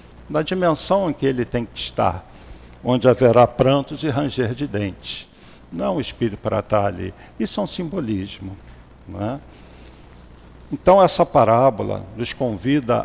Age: 60-79